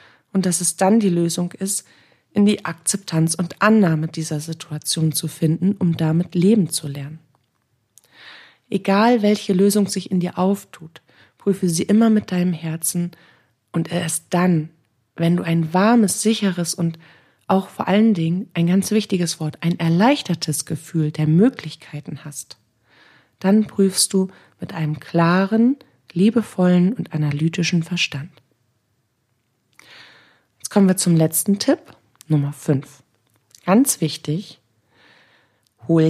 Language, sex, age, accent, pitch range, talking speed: German, female, 40-59, German, 155-190 Hz, 130 wpm